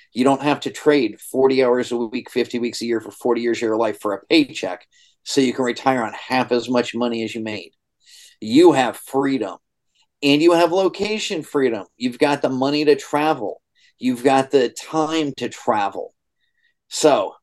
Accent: American